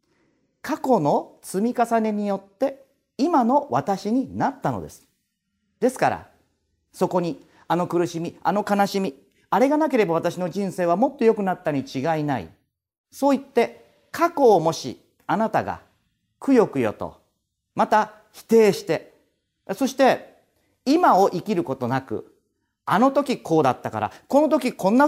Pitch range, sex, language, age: 165-270 Hz, male, Japanese, 40-59